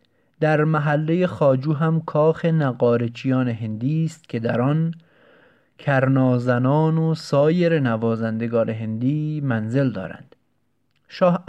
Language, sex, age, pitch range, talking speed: Persian, male, 30-49, 120-150 Hz, 100 wpm